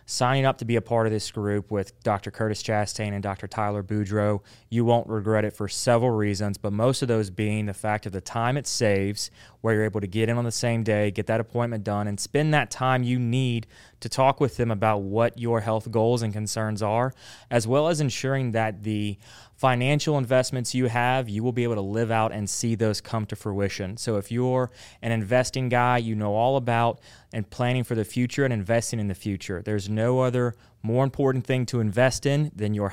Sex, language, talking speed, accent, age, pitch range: male, English, 220 wpm, American, 20-39, 105-125 Hz